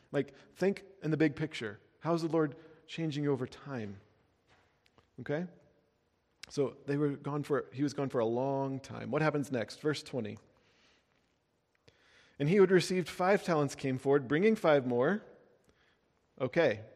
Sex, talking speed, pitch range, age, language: male, 155 wpm, 135-185 Hz, 40-59, English